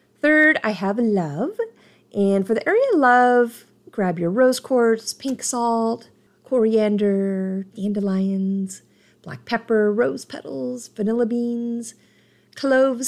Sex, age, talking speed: female, 40-59, 115 wpm